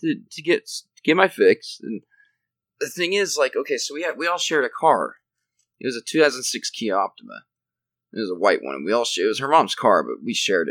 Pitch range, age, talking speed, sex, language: 120-200 Hz, 20-39, 245 wpm, male, English